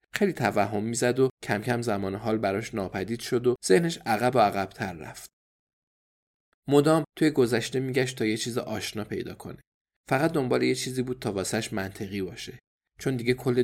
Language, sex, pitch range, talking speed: Persian, male, 100-130 Hz, 170 wpm